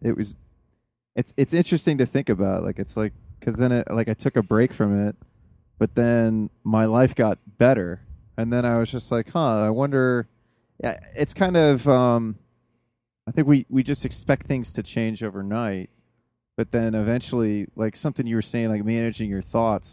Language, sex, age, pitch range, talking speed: English, male, 20-39, 105-125 Hz, 190 wpm